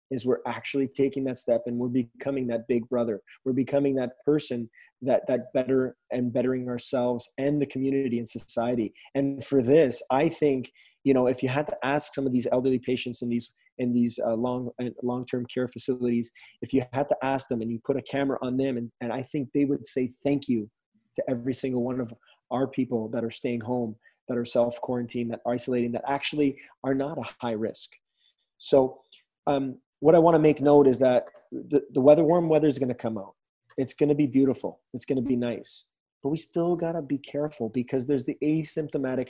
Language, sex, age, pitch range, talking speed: English, male, 30-49, 125-150 Hz, 220 wpm